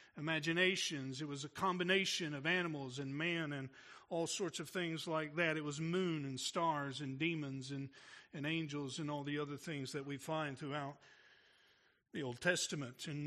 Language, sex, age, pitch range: English, male, 50-69, 150-195 Hz